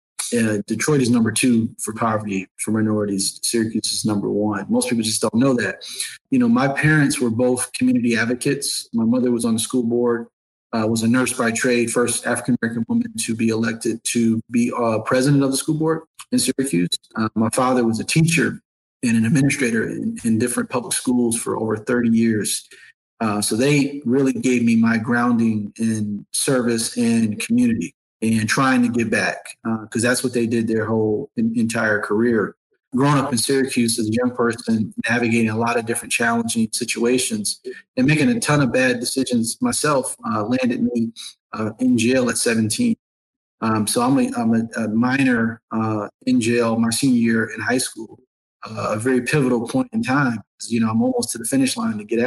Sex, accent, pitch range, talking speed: male, American, 115-140 Hz, 190 wpm